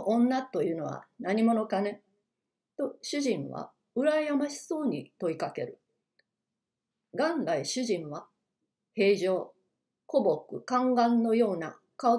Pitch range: 200-265 Hz